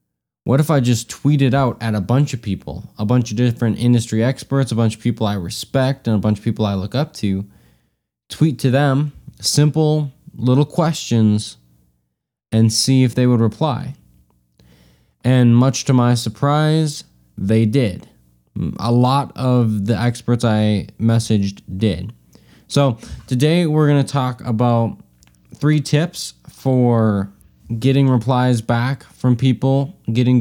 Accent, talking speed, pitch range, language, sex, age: American, 150 wpm, 100-125 Hz, English, male, 20-39